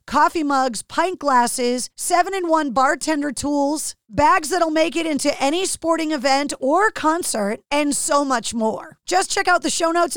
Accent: American